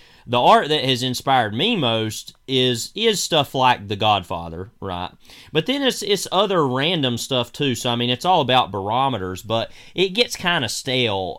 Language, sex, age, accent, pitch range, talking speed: English, male, 30-49, American, 105-135 Hz, 185 wpm